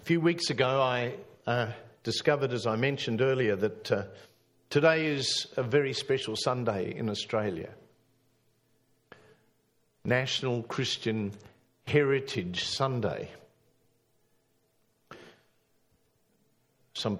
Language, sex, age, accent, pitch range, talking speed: English, male, 50-69, Australian, 115-140 Hz, 90 wpm